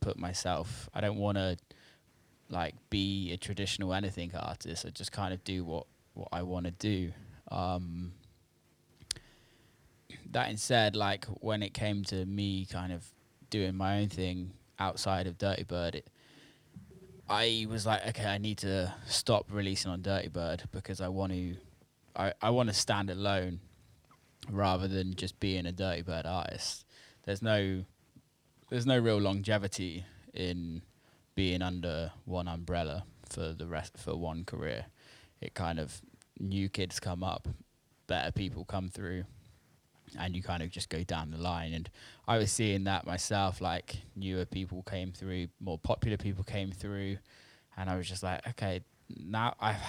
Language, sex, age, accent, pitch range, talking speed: English, male, 10-29, British, 90-105 Hz, 160 wpm